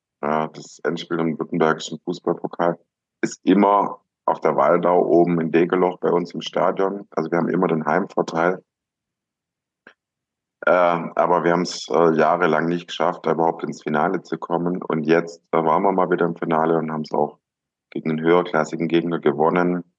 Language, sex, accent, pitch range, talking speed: German, male, German, 80-85 Hz, 160 wpm